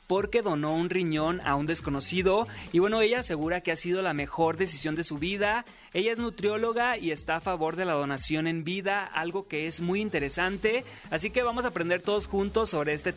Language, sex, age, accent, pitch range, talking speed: Spanish, male, 30-49, Mexican, 160-210 Hz, 210 wpm